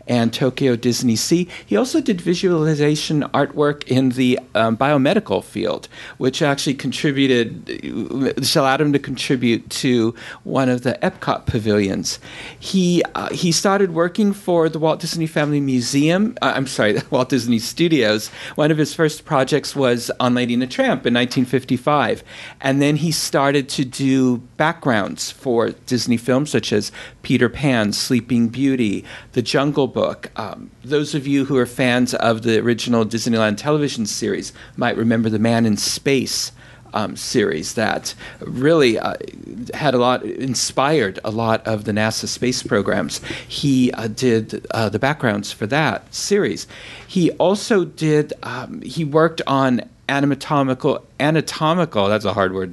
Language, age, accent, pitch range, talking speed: English, 50-69, American, 115-150 Hz, 150 wpm